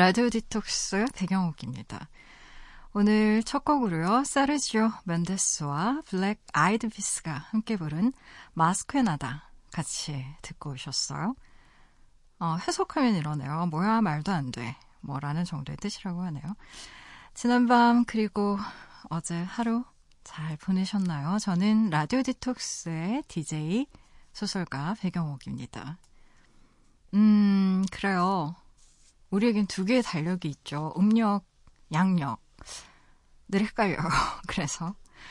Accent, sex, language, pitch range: native, female, Korean, 155-220 Hz